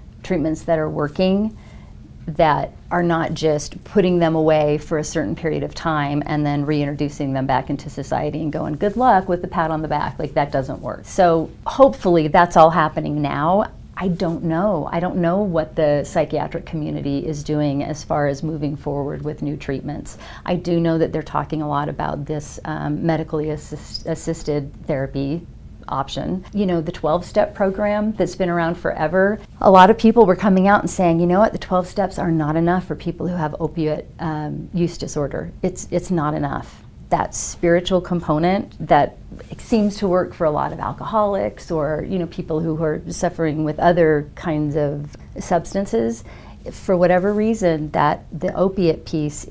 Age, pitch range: 40-59, 150-180 Hz